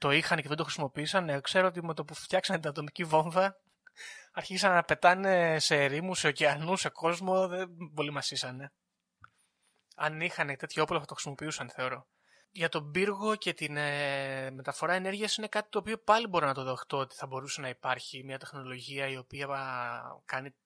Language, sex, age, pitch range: Greek, male, 20-39, 135-175 Hz